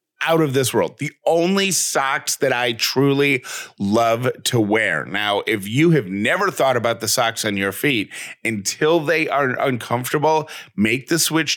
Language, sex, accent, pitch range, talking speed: English, male, American, 110-145 Hz, 165 wpm